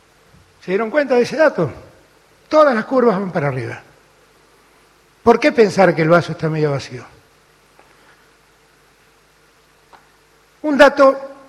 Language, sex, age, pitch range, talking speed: Spanish, male, 60-79, 175-235 Hz, 120 wpm